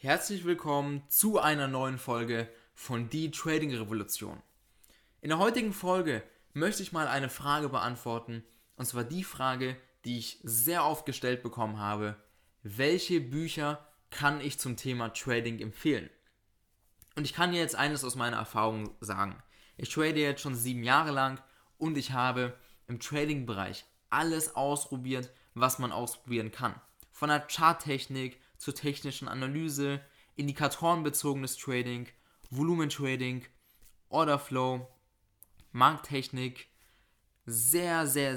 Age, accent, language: 20-39, German, German